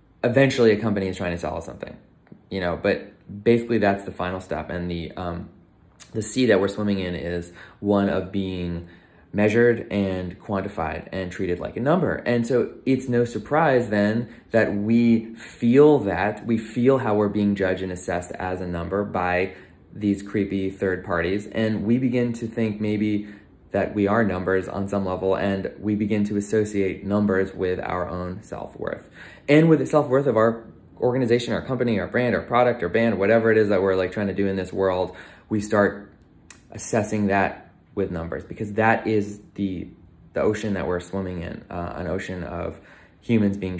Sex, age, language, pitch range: male, 20-39, English, 90-110 Hz